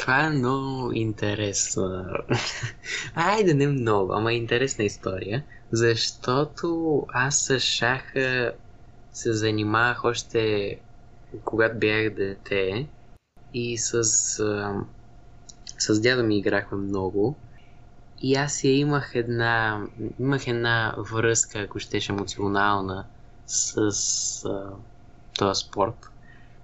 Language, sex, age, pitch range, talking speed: Bulgarian, male, 20-39, 105-130 Hz, 90 wpm